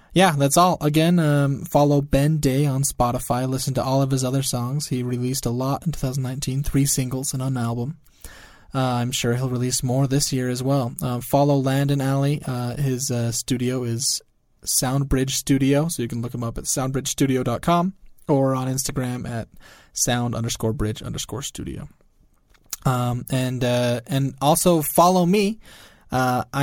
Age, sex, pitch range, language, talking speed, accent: 20-39, male, 125-145 Hz, English, 150 wpm, American